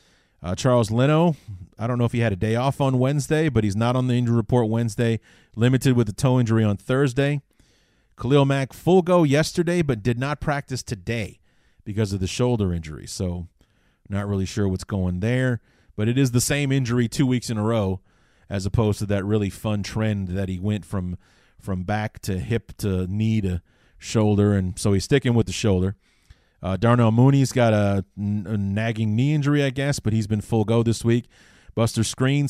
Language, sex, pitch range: English, male, 100-125 Hz